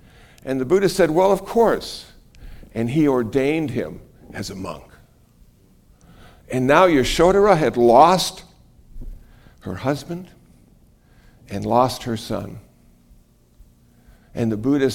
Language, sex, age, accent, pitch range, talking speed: English, male, 60-79, American, 105-145 Hz, 110 wpm